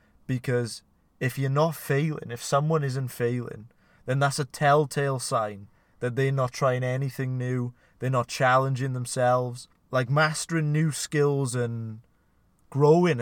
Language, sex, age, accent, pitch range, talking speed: English, male, 20-39, British, 120-150 Hz, 135 wpm